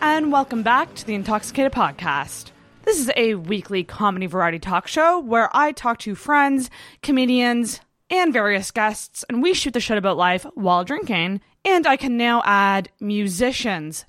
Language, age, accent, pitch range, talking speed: English, 20-39, American, 190-240 Hz, 165 wpm